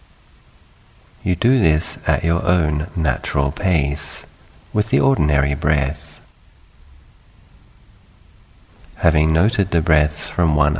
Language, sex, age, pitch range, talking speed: English, male, 50-69, 75-90 Hz, 100 wpm